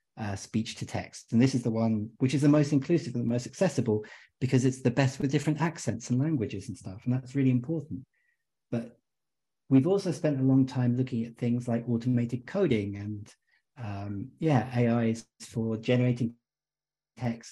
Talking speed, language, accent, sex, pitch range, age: 185 wpm, English, British, male, 115-140 Hz, 40-59